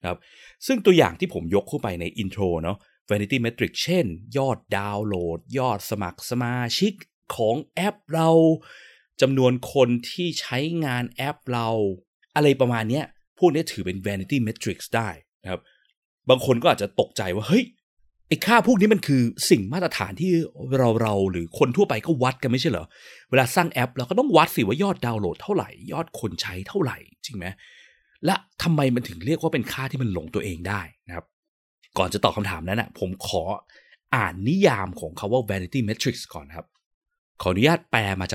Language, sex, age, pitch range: Thai, male, 20-39, 95-145 Hz